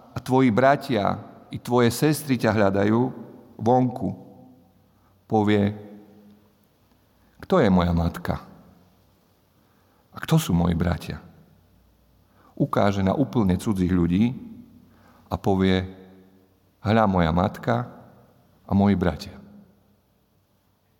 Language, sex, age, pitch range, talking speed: Slovak, male, 50-69, 95-120 Hz, 90 wpm